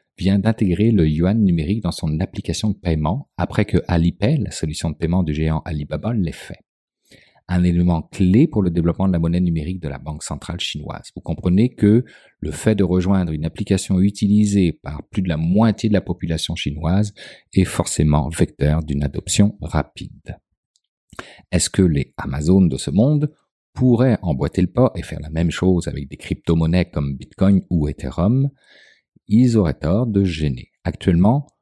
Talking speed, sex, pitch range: 175 wpm, male, 80-100 Hz